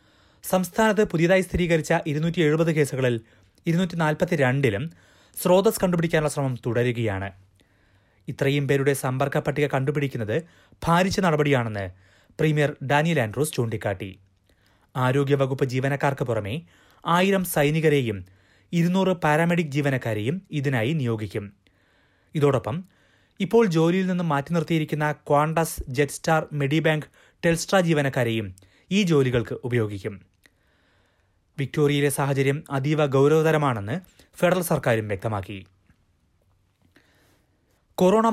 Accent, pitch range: native, 110-165 Hz